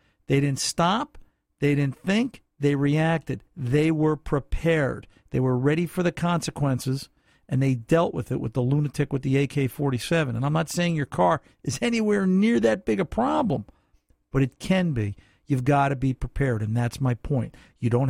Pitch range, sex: 130-160 Hz, male